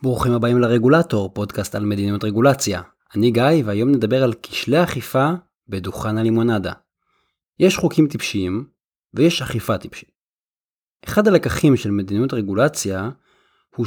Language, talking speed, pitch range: Hebrew, 120 wpm, 110-160 Hz